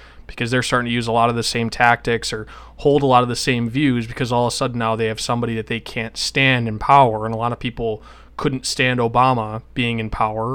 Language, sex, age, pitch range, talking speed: English, male, 20-39, 110-130 Hz, 255 wpm